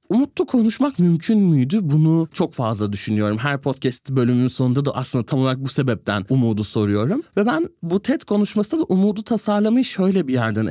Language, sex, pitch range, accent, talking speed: Turkish, male, 135-195 Hz, native, 175 wpm